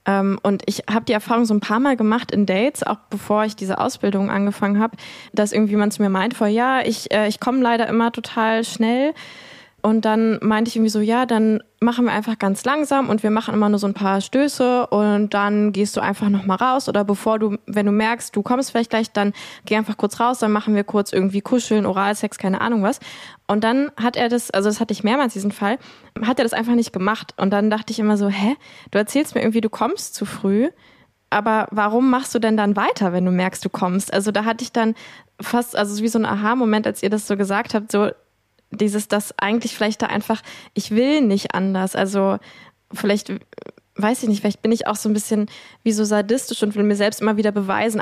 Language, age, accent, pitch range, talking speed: German, 20-39, German, 205-230 Hz, 230 wpm